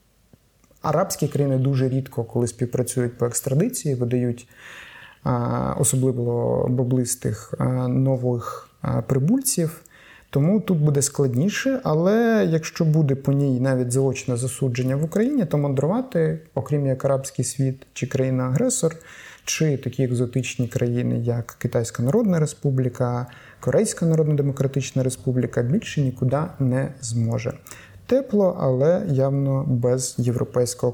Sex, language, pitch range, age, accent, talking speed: male, Ukrainian, 125-155 Hz, 30-49, native, 105 wpm